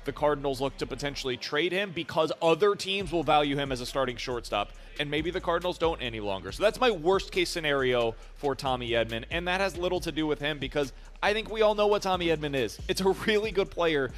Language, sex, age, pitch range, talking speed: English, male, 30-49, 125-170 Hz, 235 wpm